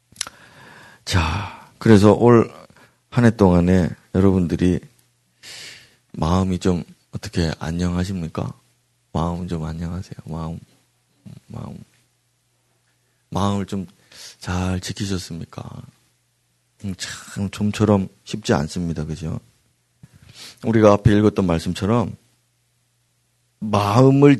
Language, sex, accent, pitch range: Korean, male, native, 85-120 Hz